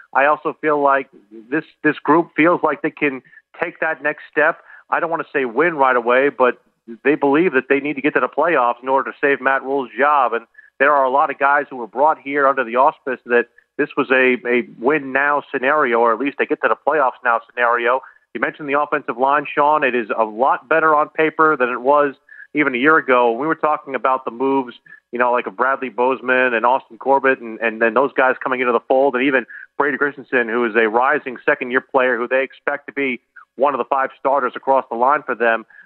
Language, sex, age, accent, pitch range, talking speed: English, male, 40-59, American, 125-150 Hz, 235 wpm